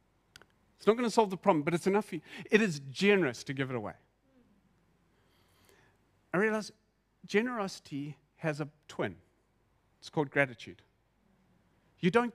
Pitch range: 135-185 Hz